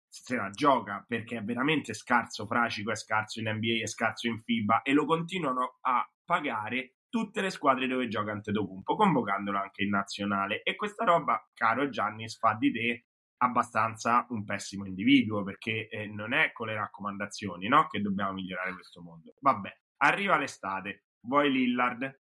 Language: Italian